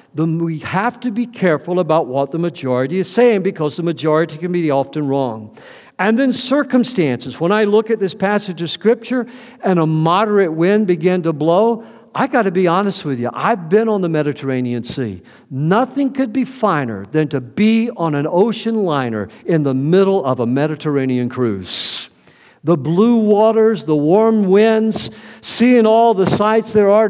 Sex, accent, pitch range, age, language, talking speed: male, American, 145-215 Hz, 50-69, English, 175 wpm